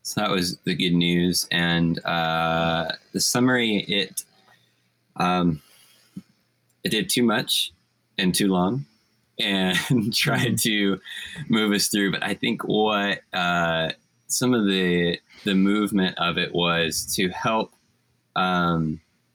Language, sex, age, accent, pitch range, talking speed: English, male, 20-39, American, 85-95 Hz, 125 wpm